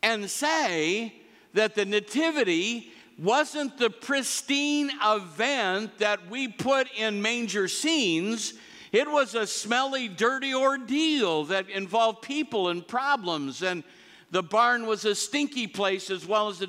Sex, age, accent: male, 60-79, American